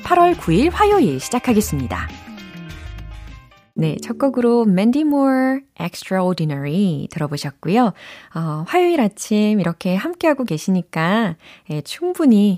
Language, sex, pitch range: Korean, female, 155-235 Hz